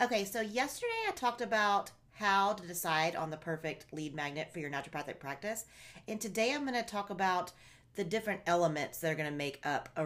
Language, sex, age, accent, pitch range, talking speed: English, female, 40-59, American, 145-190 Hz, 210 wpm